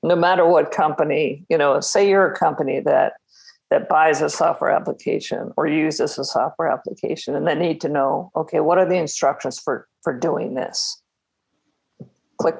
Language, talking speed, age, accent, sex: English, 170 wpm, 50-69, American, female